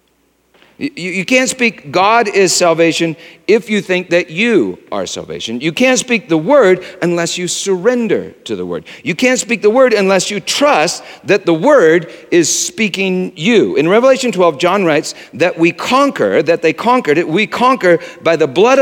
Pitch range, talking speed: 165-225 Hz, 175 wpm